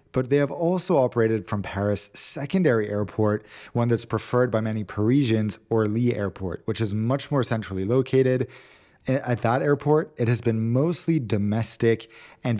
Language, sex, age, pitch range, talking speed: English, male, 20-39, 105-130 Hz, 155 wpm